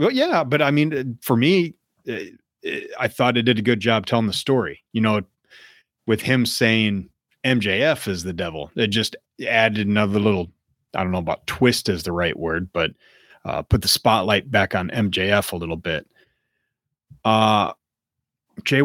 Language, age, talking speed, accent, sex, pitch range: English, 30-49, 175 wpm, American, male, 105-125 Hz